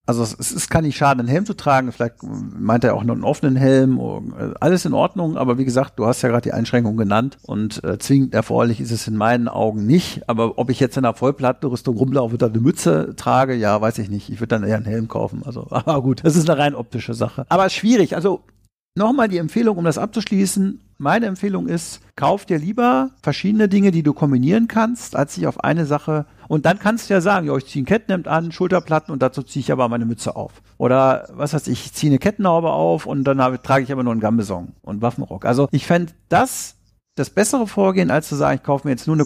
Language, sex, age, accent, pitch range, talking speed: German, male, 50-69, German, 120-180 Hz, 240 wpm